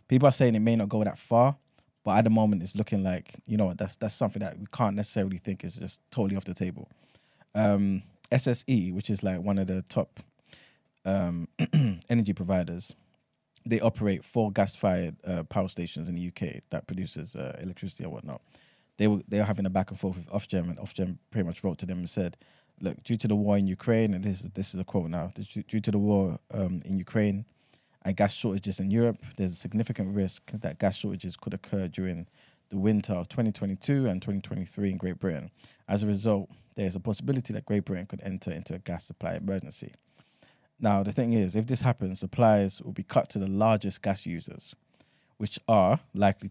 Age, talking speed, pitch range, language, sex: 20-39, 210 wpm, 95-110 Hz, English, male